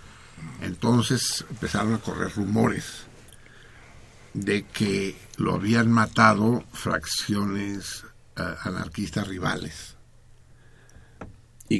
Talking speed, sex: 75 wpm, male